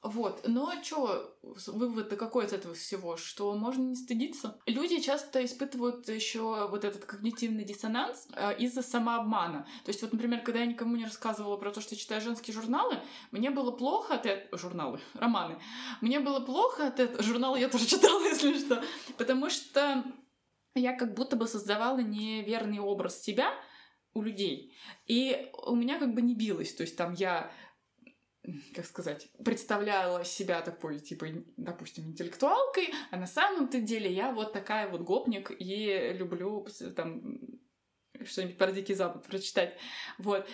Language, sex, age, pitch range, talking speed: Russian, female, 20-39, 205-265 Hz, 155 wpm